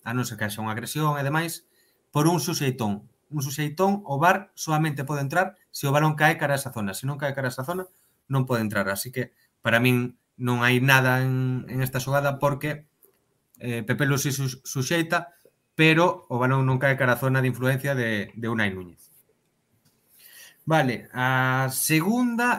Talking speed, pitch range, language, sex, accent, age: 185 wpm, 125-155 Hz, Spanish, male, Spanish, 30-49